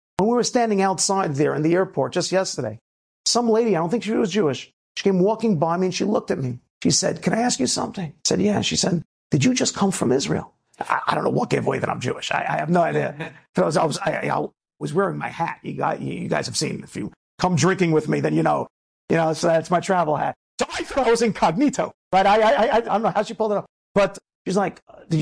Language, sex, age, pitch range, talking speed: English, male, 50-69, 170-235 Hz, 275 wpm